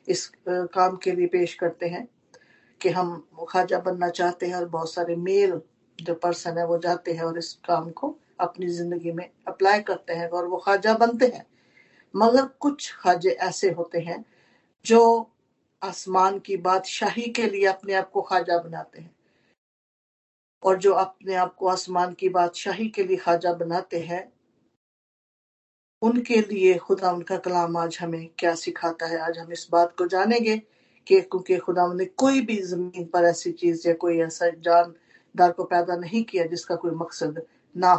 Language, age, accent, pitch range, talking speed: Hindi, 50-69, native, 170-195 Hz, 170 wpm